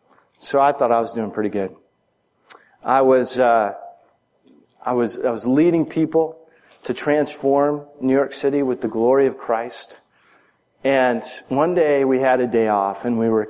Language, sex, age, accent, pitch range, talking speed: English, male, 40-59, American, 115-145 Hz, 170 wpm